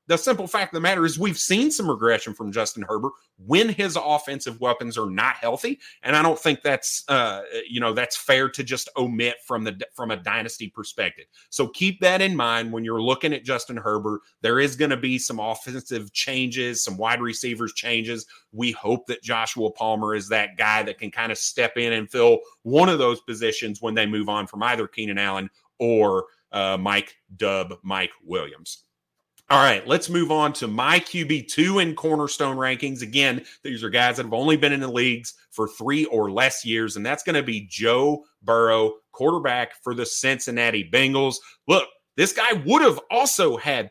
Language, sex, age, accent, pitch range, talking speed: English, male, 30-49, American, 115-150 Hz, 195 wpm